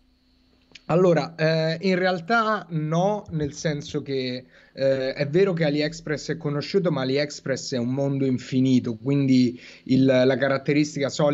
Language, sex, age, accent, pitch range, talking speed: Italian, male, 30-49, native, 125-145 Hz, 125 wpm